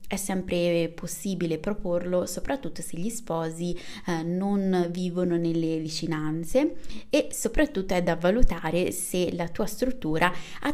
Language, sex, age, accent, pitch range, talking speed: Italian, female, 20-39, native, 170-235 Hz, 130 wpm